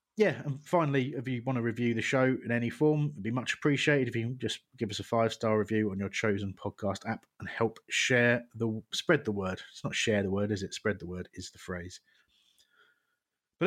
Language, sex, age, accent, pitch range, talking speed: English, male, 30-49, British, 105-130 Hz, 230 wpm